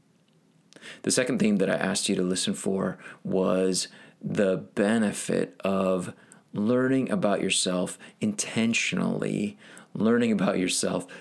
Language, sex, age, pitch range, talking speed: English, male, 30-49, 95-140 Hz, 110 wpm